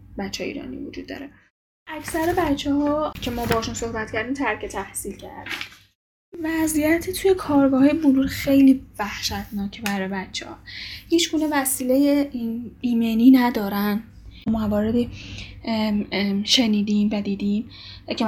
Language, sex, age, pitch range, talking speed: Persian, female, 10-29, 210-260 Hz, 110 wpm